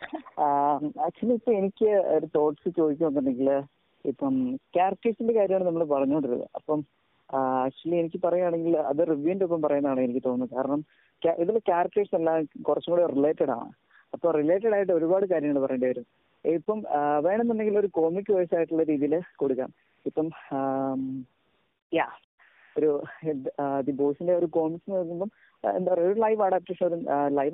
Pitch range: 135-175 Hz